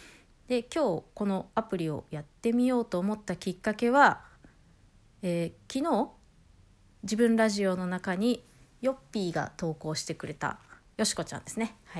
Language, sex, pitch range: Japanese, female, 170-270 Hz